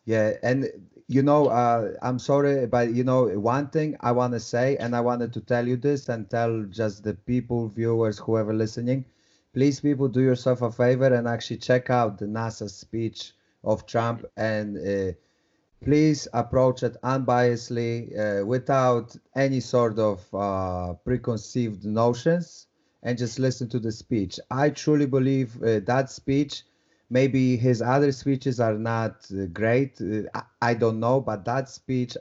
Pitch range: 110-130 Hz